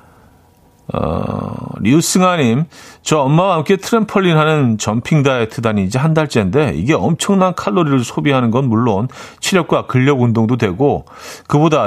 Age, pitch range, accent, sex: 40-59, 105-150 Hz, native, male